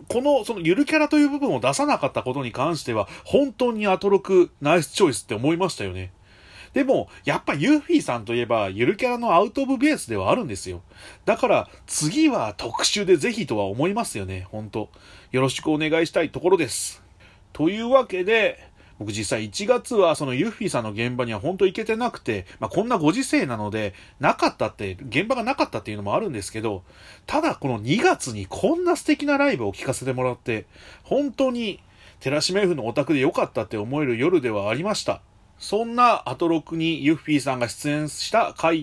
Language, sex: Japanese, male